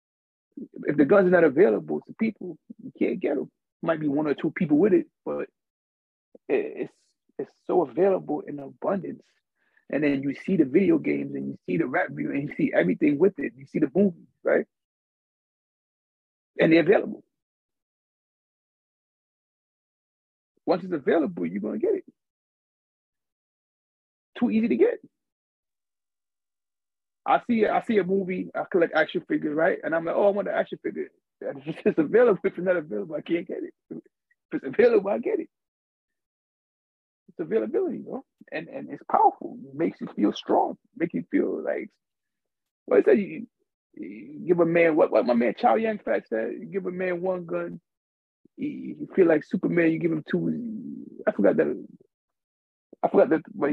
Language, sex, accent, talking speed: English, male, American, 175 wpm